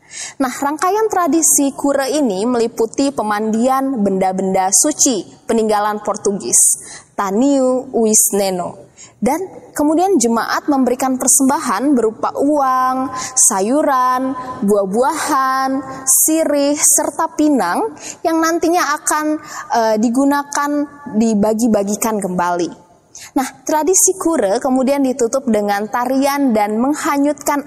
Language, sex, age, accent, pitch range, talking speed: Indonesian, female, 20-39, native, 220-290 Hz, 90 wpm